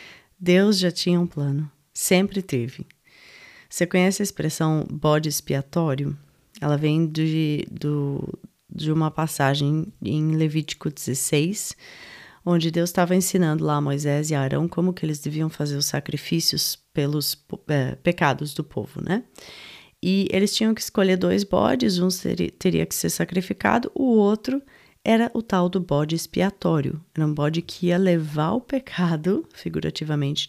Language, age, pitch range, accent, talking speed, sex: Portuguese, 30-49, 150-185 Hz, Brazilian, 145 wpm, female